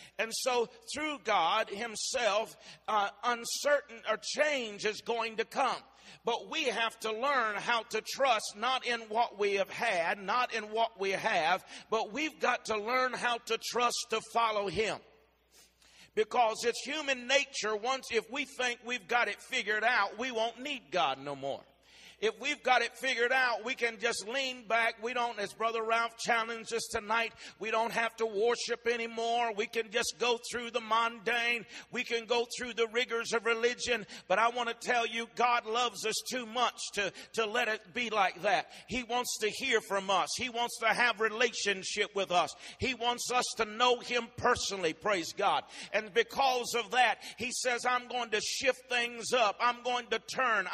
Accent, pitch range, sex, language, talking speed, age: American, 220-245 Hz, male, English, 185 wpm, 50-69